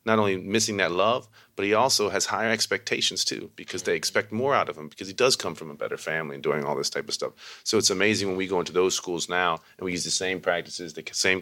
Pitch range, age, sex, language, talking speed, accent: 80-95 Hz, 30-49, male, English, 275 wpm, American